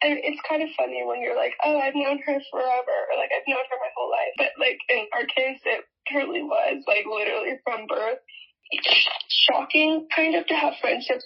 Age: 10-29